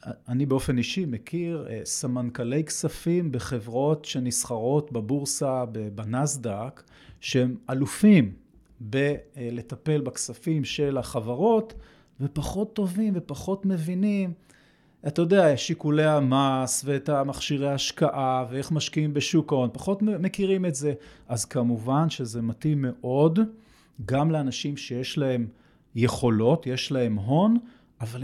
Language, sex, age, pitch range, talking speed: Hebrew, male, 30-49, 125-180 Hz, 105 wpm